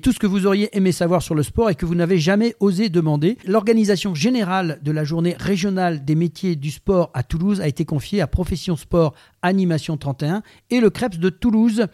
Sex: male